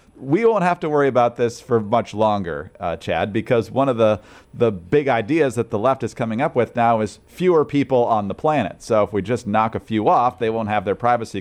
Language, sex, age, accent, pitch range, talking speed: English, male, 40-59, American, 110-145 Hz, 240 wpm